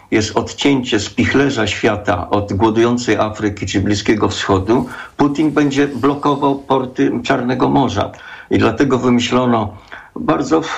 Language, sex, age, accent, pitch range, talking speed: Polish, male, 50-69, native, 110-130 Hz, 110 wpm